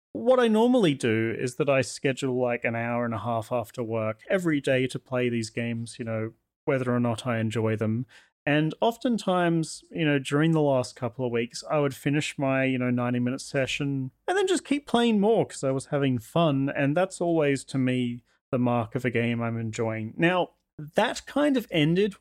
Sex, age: male, 30-49